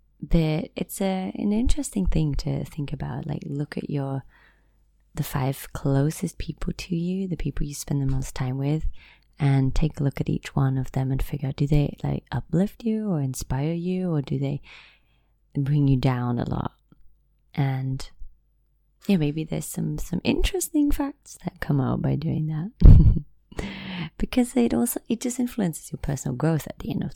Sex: female